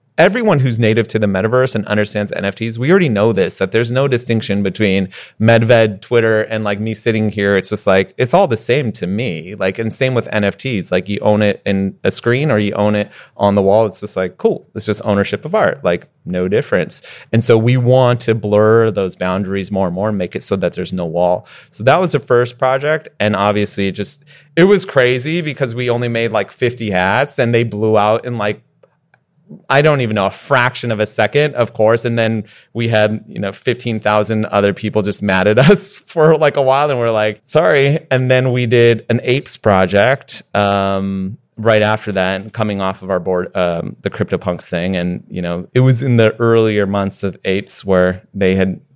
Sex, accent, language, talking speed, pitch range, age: male, American, English, 215 wpm, 100-120 Hz, 30-49